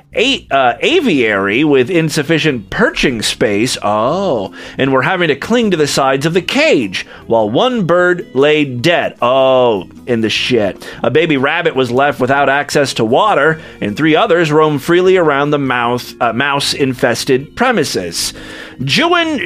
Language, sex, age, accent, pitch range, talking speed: English, male, 30-49, American, 125-180 Hz, 150 wpm